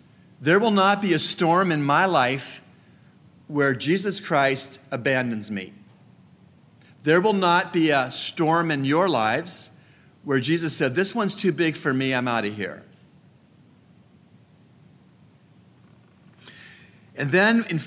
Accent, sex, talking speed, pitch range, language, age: American, male, 130 wpm, 135-195 Hz, English, 50-69